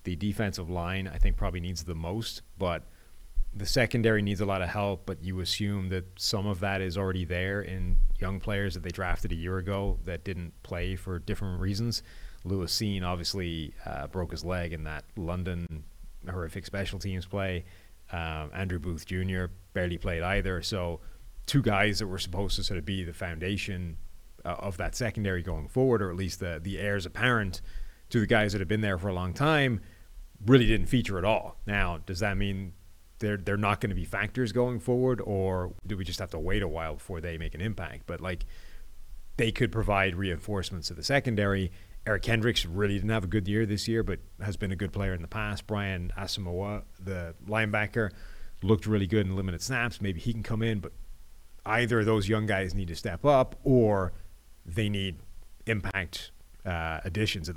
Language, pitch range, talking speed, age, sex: English, 90-105 Hz, 200 wpm, 30-49, male